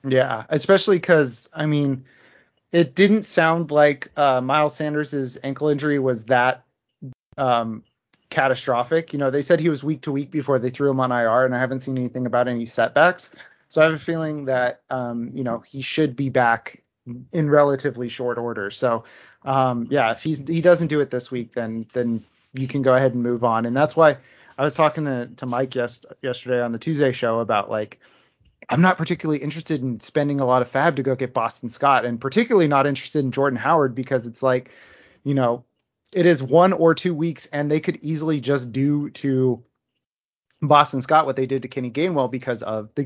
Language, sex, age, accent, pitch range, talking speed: English, male, 30-49, American, 125-155 Hz, 205 wpm